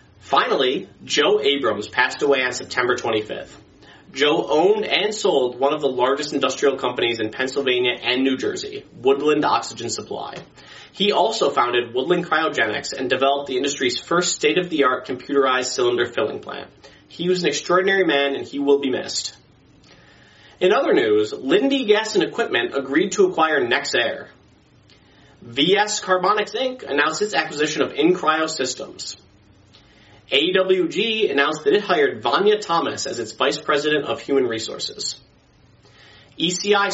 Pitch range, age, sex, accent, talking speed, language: 135-210 Hz, 30-49, male, American, 140 wpm, English